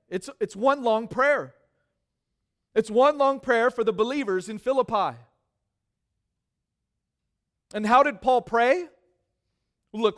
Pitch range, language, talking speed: 140-230 Hz, English, 120 wpm